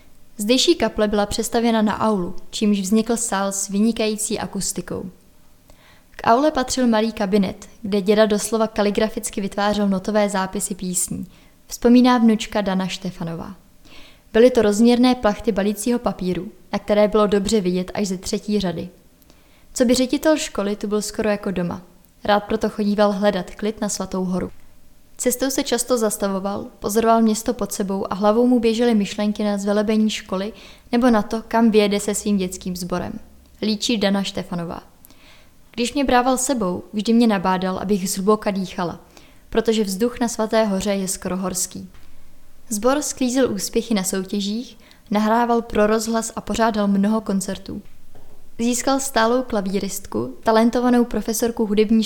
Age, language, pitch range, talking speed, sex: 20-39, Czech, 195-225 Hz, 145 wpm, female